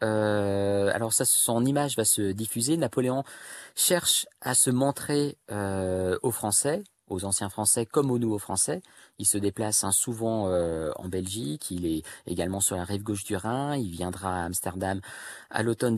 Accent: French